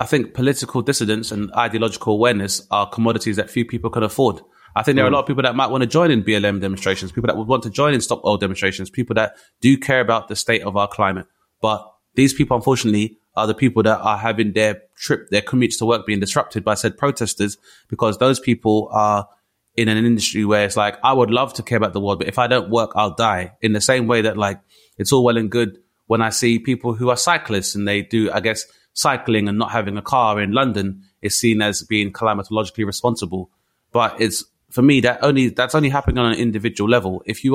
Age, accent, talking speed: 20-39, British, 235 wpm